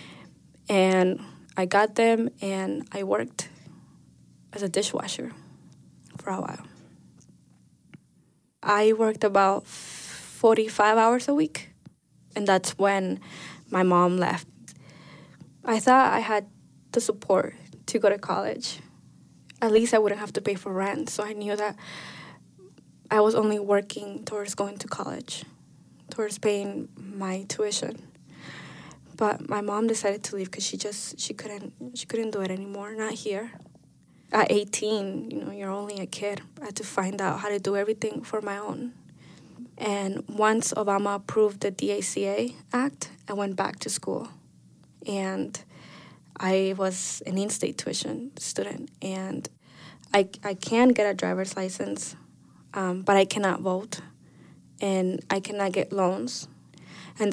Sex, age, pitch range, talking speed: female, 10-29, 185-215 Hz, 145 wpm